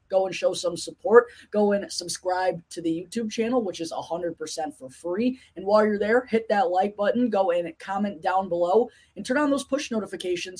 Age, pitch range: 20-39, 165-205 Hz